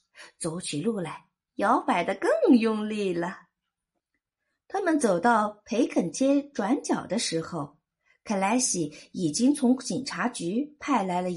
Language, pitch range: Chinese, 185-260 Hz